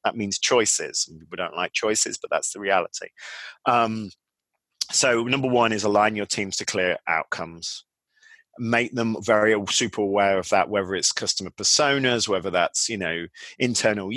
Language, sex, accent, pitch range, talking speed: English, male, British, 105-145 Hz, 165 wpm